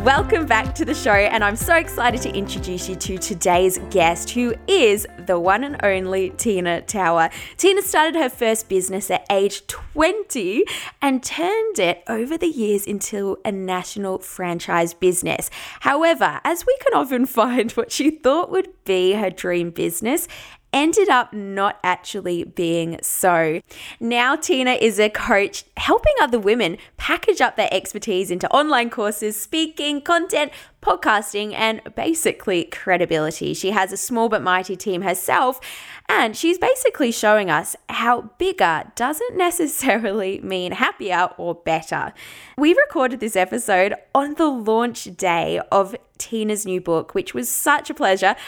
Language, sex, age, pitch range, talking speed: English, female, 20-39, 185-285 Hz, 150 wpm